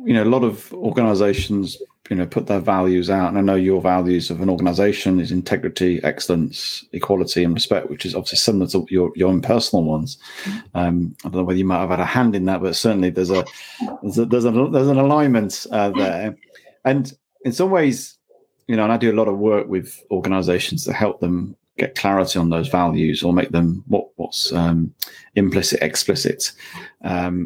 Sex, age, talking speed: male, 30-49, 205 wpm